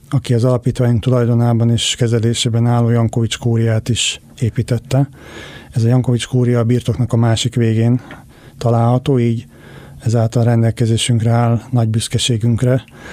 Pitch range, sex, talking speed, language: 115-125 Hz, male, 125 wpm, Hungarian